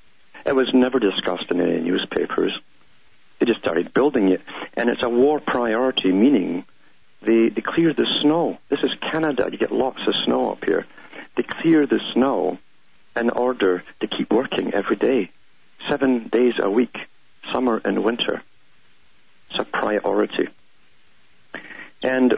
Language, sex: English, male